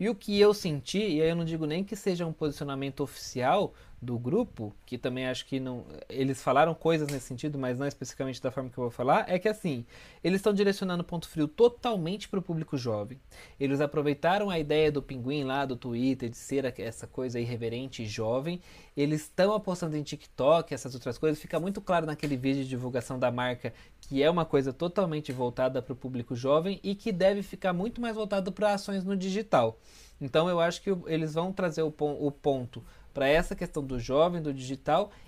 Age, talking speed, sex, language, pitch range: 20-39, 205 wpm, male, Portuguese, 130-180 Hz